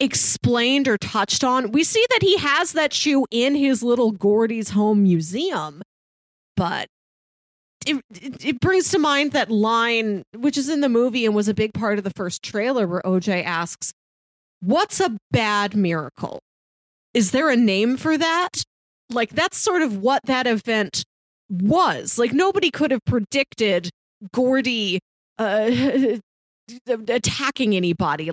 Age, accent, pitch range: 30-49, American, 205-265 Hz